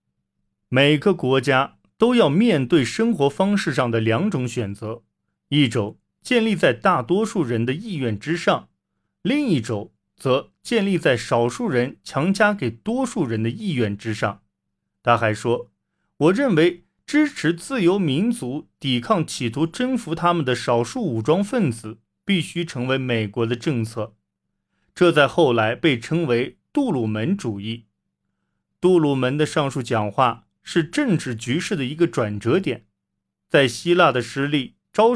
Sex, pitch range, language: male, 115-175 Hz, Chinese